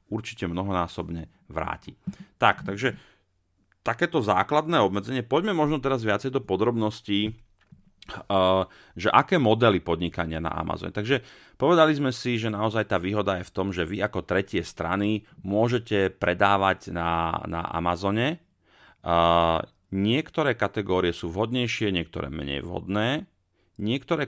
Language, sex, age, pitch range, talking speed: Slovak, male, 40-59, 85-110 Hz, 120 wpm